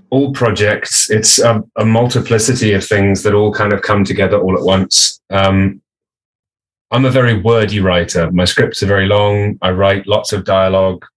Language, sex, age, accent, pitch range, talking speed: French, male, 30-49, British, 95-115 Hz, 175 wpm